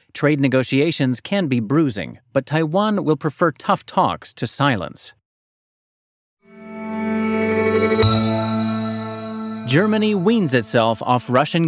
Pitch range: 125-185 Hz